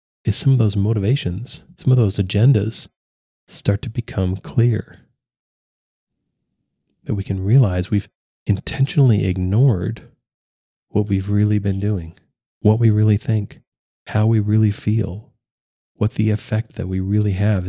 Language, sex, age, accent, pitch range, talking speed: English, male, 30-49, American, 95-120 Hz, 135 wpm